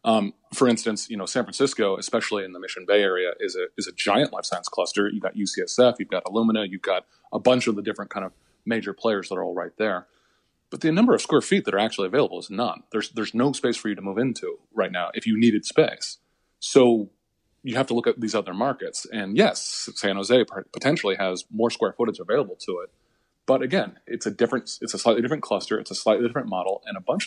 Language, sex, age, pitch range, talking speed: English, male, 30-49, 100-125 Hz, 240 wpm